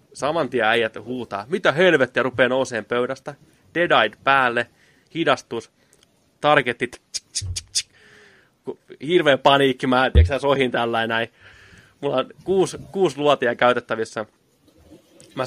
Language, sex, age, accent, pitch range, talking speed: Finnish, male, 20-39, native, 115-140 Hz, 115 wpm